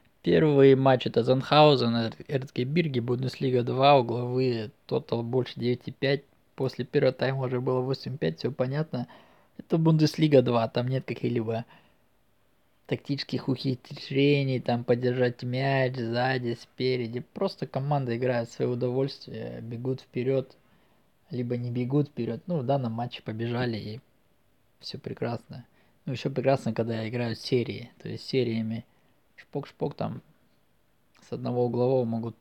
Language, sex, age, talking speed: Russian, male, 20-39, 130 wpm